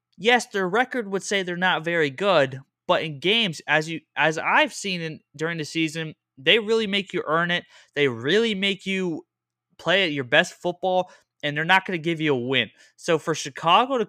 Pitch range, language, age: 145-195 Hz, English, 20-39